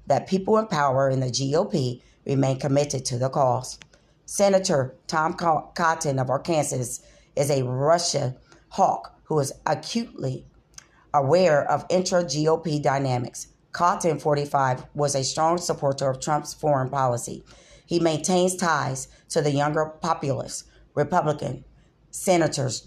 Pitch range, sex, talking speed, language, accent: 135-165 Hz, female, 125 wpm, English, American